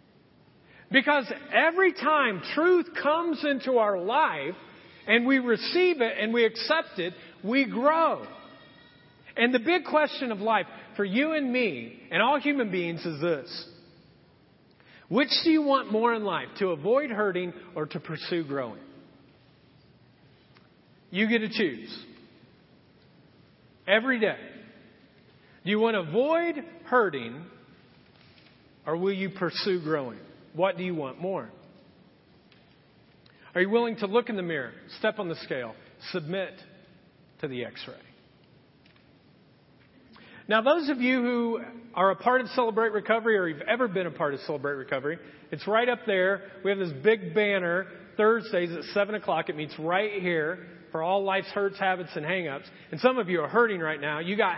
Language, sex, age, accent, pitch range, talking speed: English, male, 40-59, American, 180-240 Hz, 155 wpm